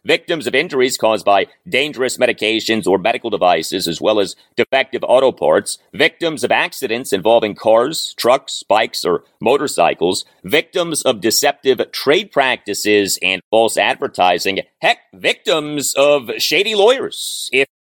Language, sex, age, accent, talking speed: English, male, 40-59, American, 130 wpm